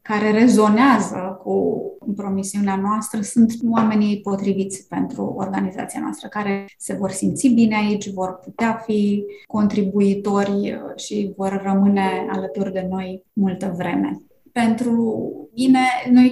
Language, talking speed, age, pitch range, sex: Romanian, 120 wpm, 20-39, 195-230 Hz, female